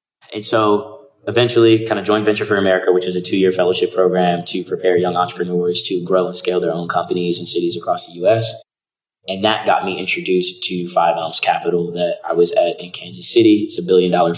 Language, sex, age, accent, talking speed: English, male, 20-39, American, 220 wpm